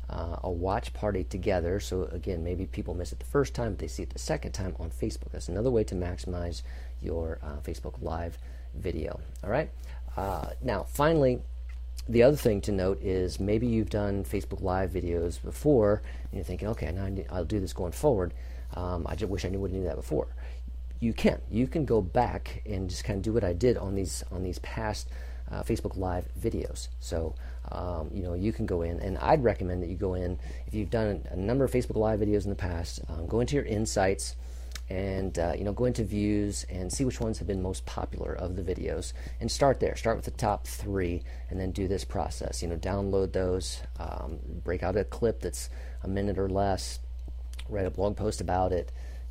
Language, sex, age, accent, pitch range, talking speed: English, male, 40-59, American, 70-100 Hz, 220 wpm